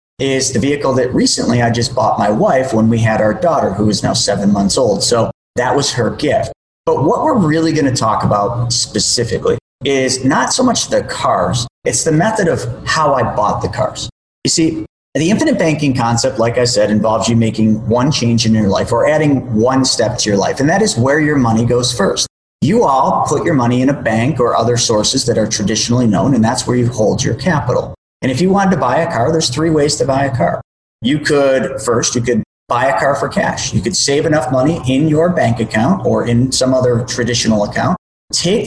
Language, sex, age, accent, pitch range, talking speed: English, male, 40-59, American, 115-155 Hz, 225 wpm